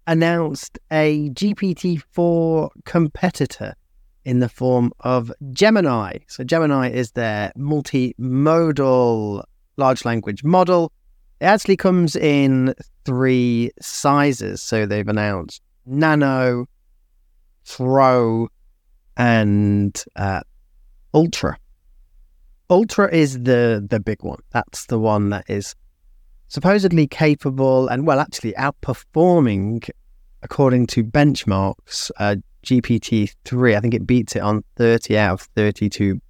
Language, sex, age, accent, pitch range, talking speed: English, male, 30-49, British, 100-140 Hz, 105 wpm